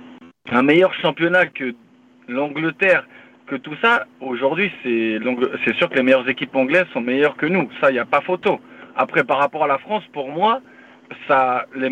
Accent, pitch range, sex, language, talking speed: French, 135-185 Hz, male, French, 185 wpm